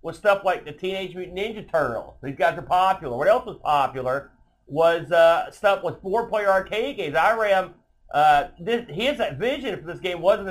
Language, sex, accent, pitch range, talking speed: English, male, American, 155-200 Hz, 175 wpm